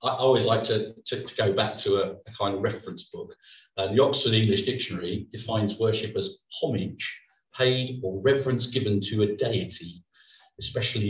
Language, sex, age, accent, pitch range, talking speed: English, male, 40-59, British, 100-130 Hz, 175 wpm